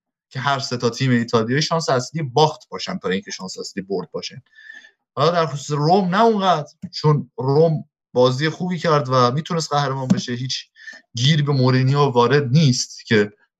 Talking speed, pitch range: 170 wpm, 115-145 Hz